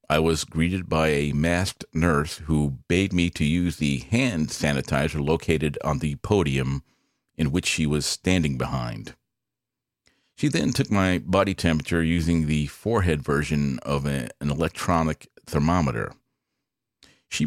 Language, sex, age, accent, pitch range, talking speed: English, male, 50-69, American, 75-95 Hz, 135 wpm